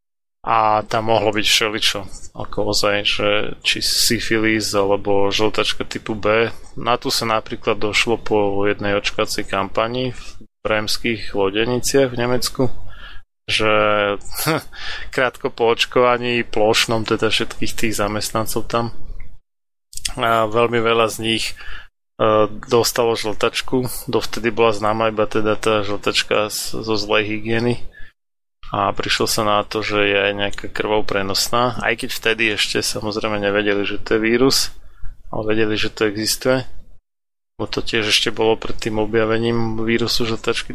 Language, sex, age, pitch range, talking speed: Slovak, male, 20-39, 105-115 Hz, 135 wpm